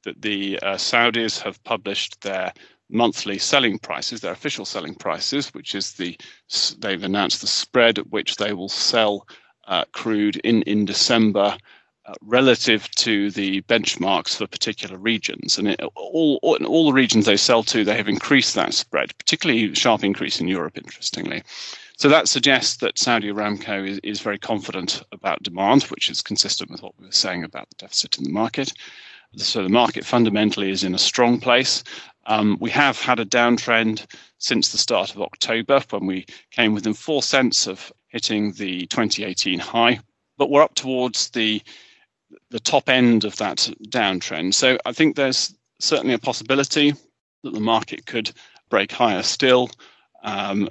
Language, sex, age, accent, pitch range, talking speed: English, male, 40-59, British, 105-130 Hz, 165 wpm